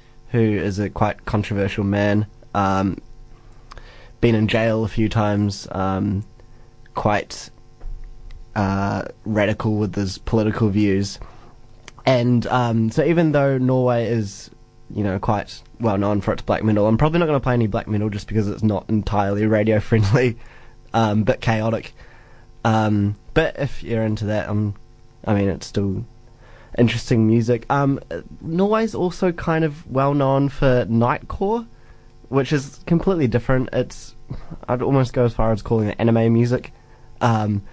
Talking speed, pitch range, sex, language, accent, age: 150 wpm, 110-125 Hz, male, English, Australian, 20-39